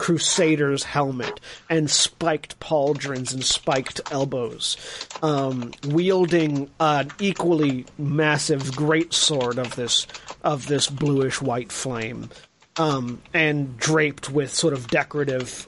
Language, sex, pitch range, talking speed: English, male, 135-195 Hz, 105 wpm